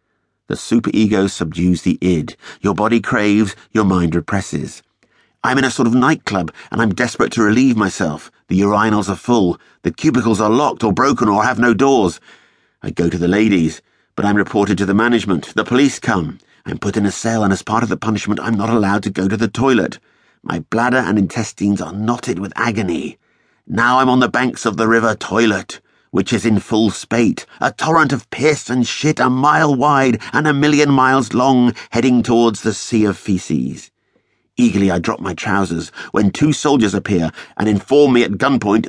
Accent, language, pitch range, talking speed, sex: British, English, 95-120 Hz, 195 wpm, male